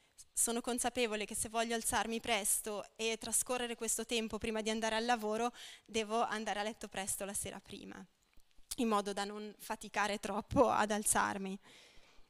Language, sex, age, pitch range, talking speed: Italian, female, 20-39, 210-240 Hz, 155 wpm